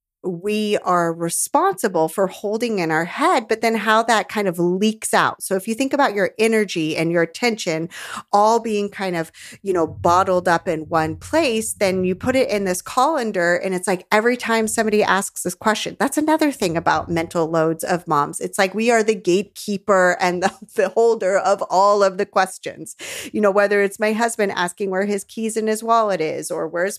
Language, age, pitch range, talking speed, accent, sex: English, 30-49, 175-225 Hz, 205 wpm, American, female